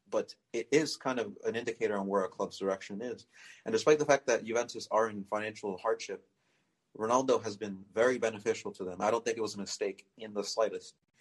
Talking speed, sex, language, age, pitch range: 215 wpm, male, English, 30-49, 100-135 Hz